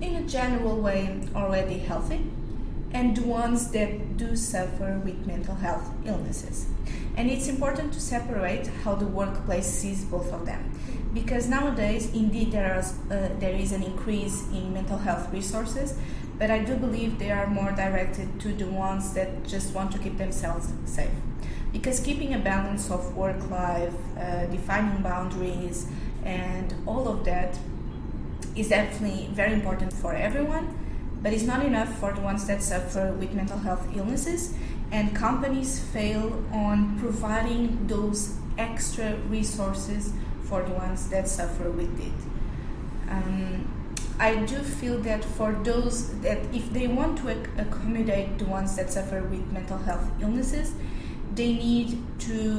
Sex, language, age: female, English, 20-39